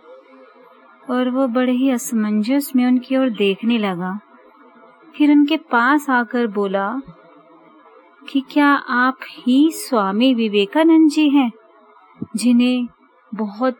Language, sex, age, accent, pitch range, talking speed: Hindi, female, 30-49, native, 205-250 Hz, 110 wpm